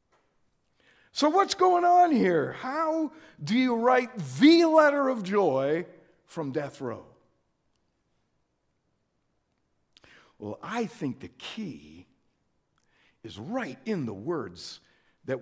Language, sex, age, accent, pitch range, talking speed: English, male, 60-79, American, 150-235 Hz, 105 wpm